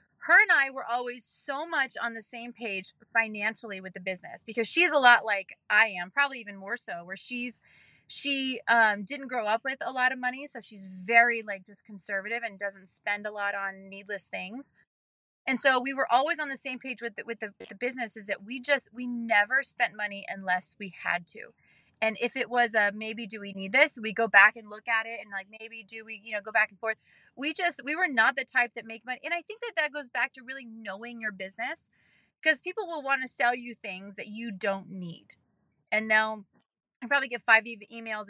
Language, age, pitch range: English, 30-49, 205-250 Hz